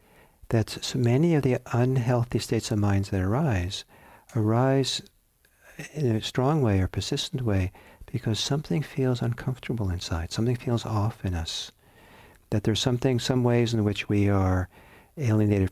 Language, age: English, 60-79